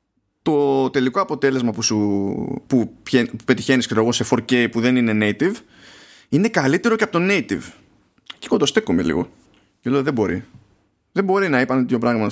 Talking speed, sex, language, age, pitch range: 155 wpm, male, Greek, 20-39, 110-175 Hz